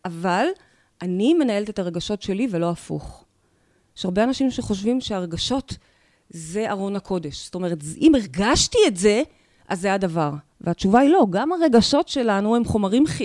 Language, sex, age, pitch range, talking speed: Hebrew, female, 30-49, 200-300 Hz, 150 wpm